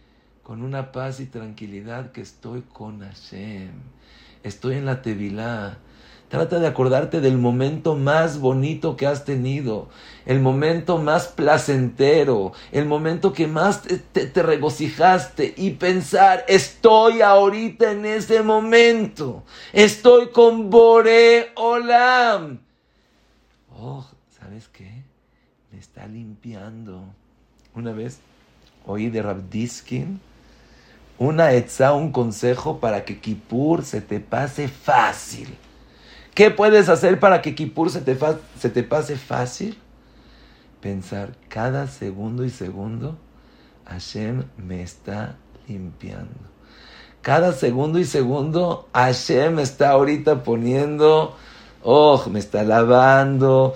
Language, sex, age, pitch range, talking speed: English, male, 50-69, 115-165 Hz, 110 wpm